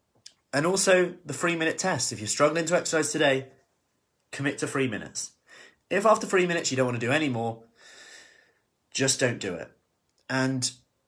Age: 30-49